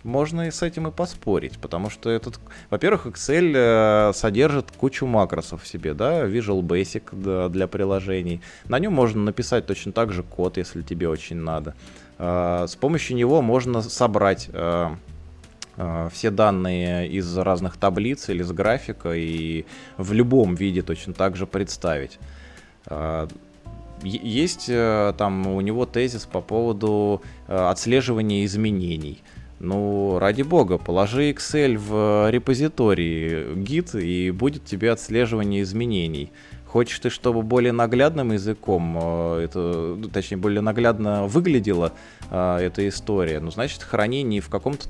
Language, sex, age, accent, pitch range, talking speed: Russian, male, 20-39, native, 85-110 Hz, 125 wpm